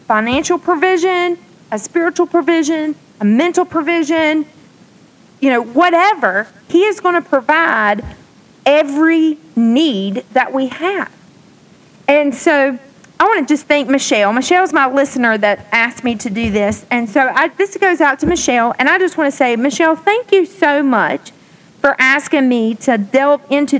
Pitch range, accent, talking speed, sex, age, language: 235-310 Hz, American, 160 wpm, female, 40-59, English